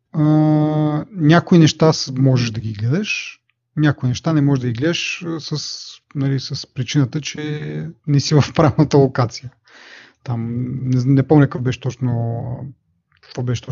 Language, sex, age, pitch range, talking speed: Bulgarian, male, 30-49, 125-165 Hz, 140 wpm